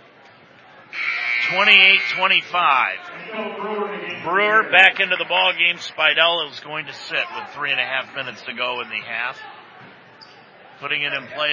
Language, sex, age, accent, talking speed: English, male, 50-69, American, 140 wpm